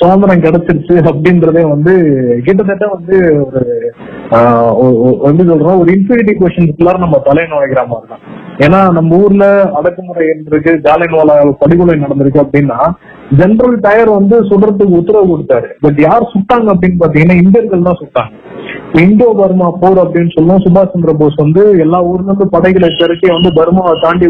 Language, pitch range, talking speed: Tamil, 160-200 Hz, 140 wpm